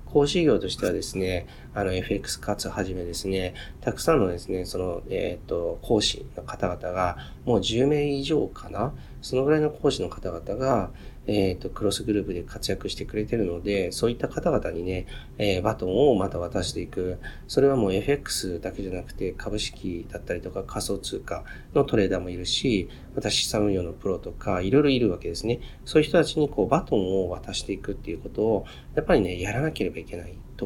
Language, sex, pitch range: Japanese, male, 90-120 Hz